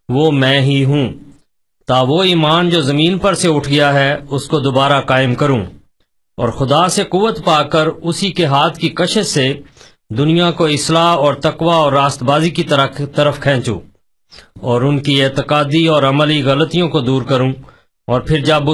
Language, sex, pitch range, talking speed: Urdu, male, 140-165 Hz, 175 wpm